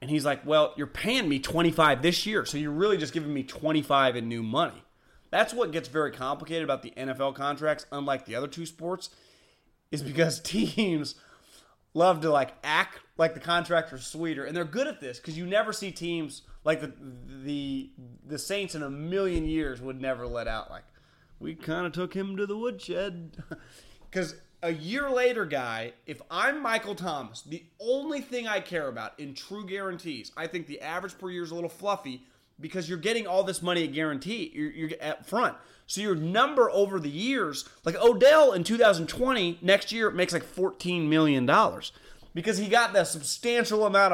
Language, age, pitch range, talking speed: English, 30-49, 145-195 Hz, 190 wpm